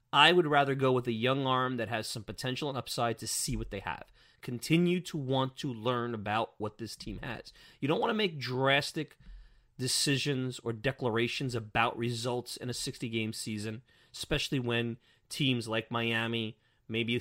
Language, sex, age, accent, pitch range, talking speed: English, male, 30-49, American, 115-140 Hz, 175 wpm